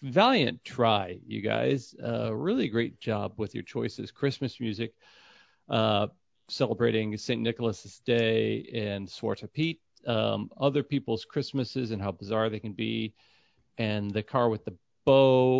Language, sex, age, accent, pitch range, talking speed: English, male, 40-59, American, 105-130 Hz, 140 wpm